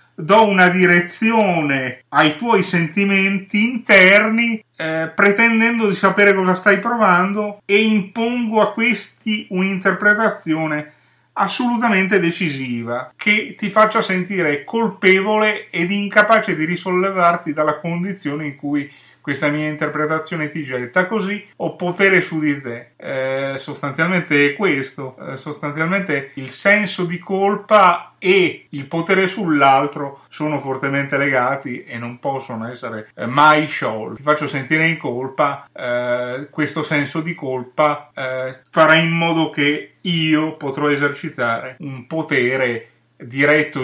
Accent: native